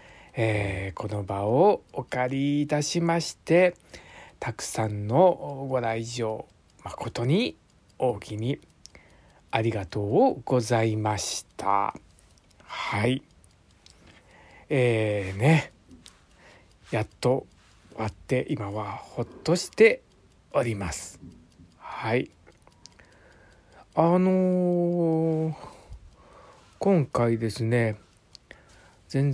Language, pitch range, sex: Japanese, 105-145 Hz, male